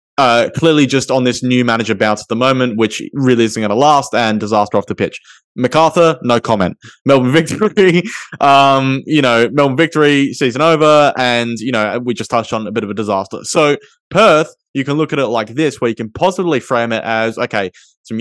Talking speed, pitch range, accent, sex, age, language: 210 wpm, 115-145 Hz, Australian, male, 20-39, English